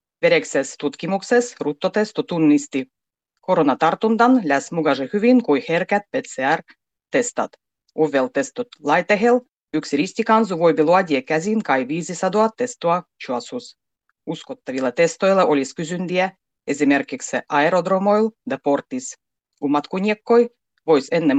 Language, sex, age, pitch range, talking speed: Finnish, female, 30-49, 145-210 Hz, 110 wpm